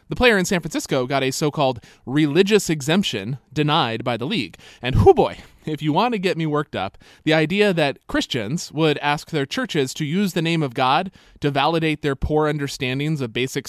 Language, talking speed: English, 205 wpm